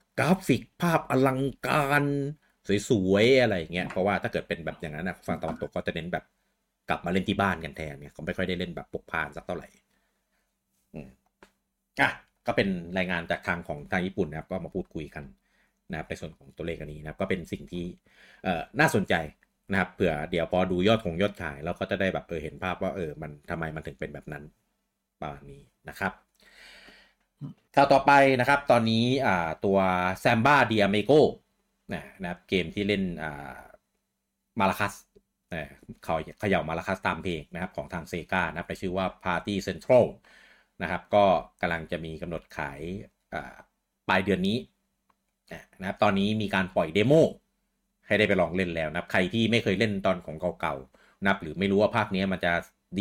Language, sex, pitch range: Thai, male, 80-105 Hz